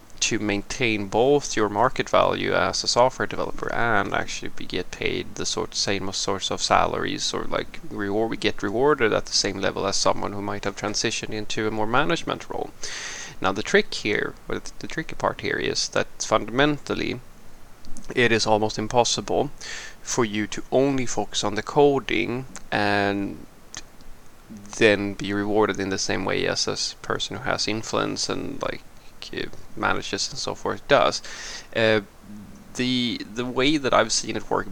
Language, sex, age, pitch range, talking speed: English, male, 20-39, 100-120 Hz, 165 wpm